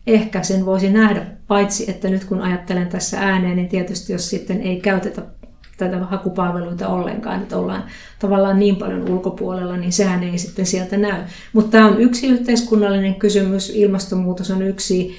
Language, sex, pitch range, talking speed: Finnish, female, 185-210 Hz, 160 wpm